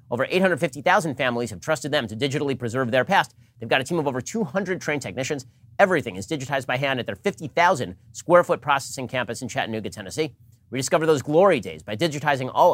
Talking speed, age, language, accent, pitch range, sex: 200 wpm, 30-49, English, American, 115-150 Hz, male